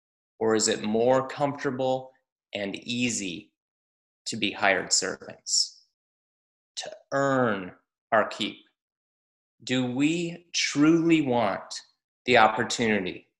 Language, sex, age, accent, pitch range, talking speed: English, male, 30-49, American, 115-145 Hz, 95 wpm